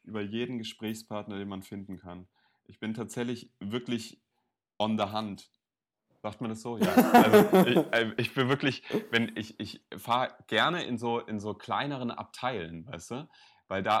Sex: male